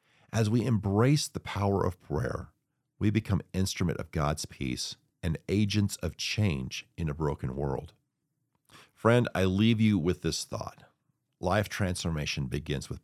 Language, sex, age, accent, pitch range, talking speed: English, male, 50-69, American, 80-110 Hz, 145 wpm